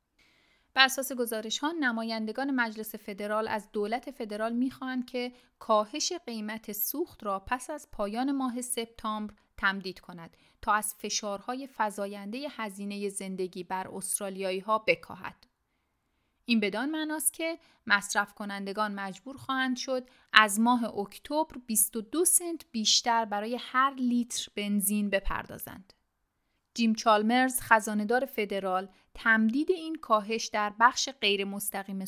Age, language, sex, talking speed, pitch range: 30-49, Persian, female, 110 wpm, 205-255 Hz